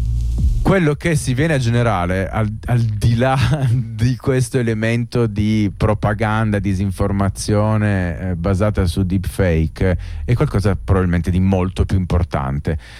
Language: Italian